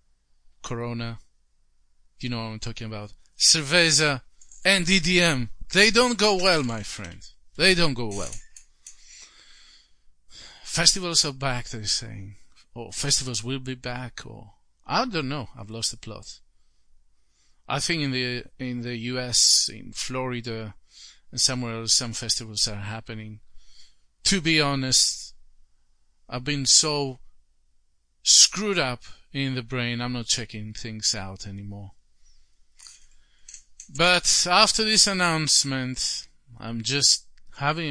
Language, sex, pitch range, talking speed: English, male, 105-135 Hz, 125 wpm